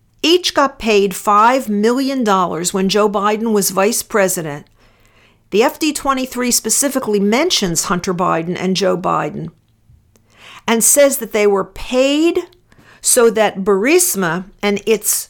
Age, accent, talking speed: 50-69, American, 120 wpm